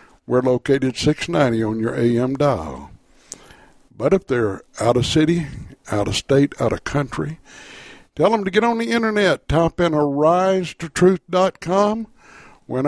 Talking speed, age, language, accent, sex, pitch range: 150 wpm, 60-79, English, American, male, 130-180 Hz